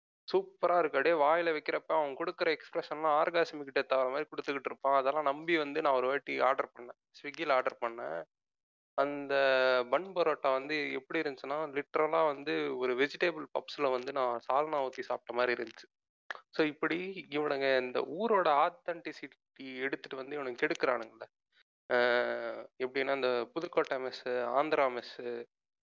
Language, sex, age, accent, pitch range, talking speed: Tamil, male, 20-39, native, 130-160 Hz, 135 wpm